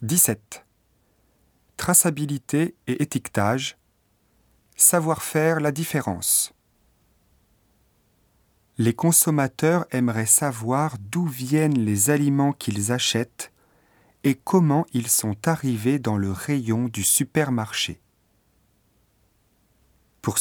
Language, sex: Japanese, male